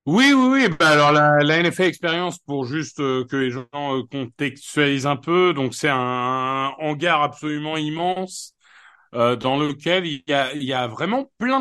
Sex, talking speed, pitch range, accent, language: male, 170 wpm, 115-155 Hz, French, French